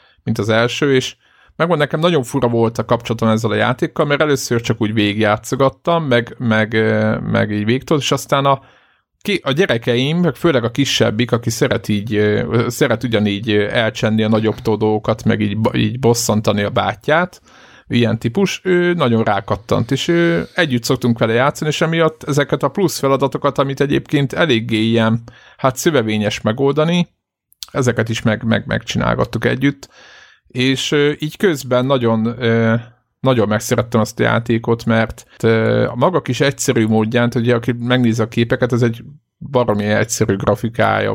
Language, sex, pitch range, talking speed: Hungarian, male, 110-135 Hz, 150 wpm